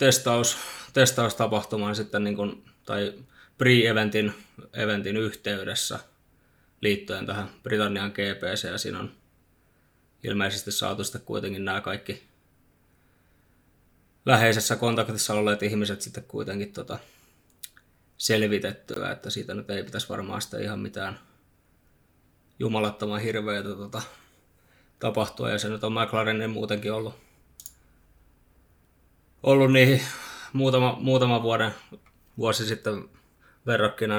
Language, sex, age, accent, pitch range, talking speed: Finnish, male, 20-39, native, 100-115 Hz, 100 wpm